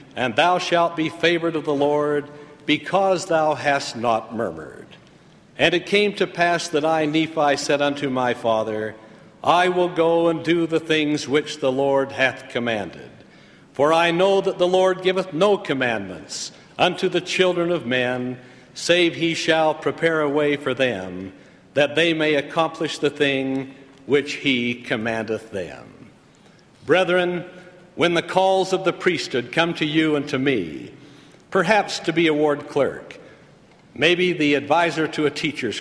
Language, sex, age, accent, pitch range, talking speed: English, male, 60-79, American, 135-170 Hz, 160 wpm